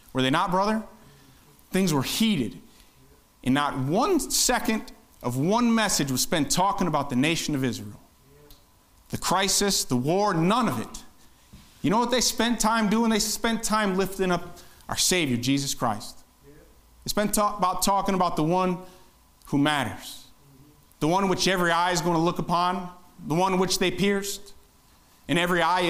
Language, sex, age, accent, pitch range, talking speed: English, male, 30-49, American, 120-180 Hz, 170 wpm